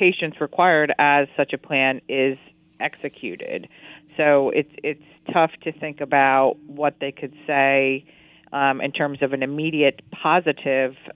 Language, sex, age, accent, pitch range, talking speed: English, female, 40-59, American, 140-160 Hz, 135 wpm